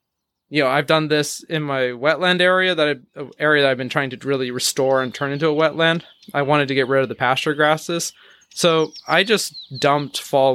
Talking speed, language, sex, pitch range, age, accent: 215 wpm, English, male, 125-160 Hz, 20-39, American